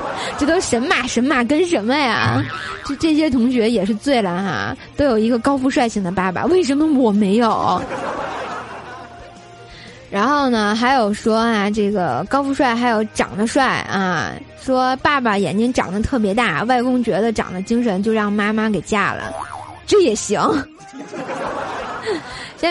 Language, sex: Chinese, female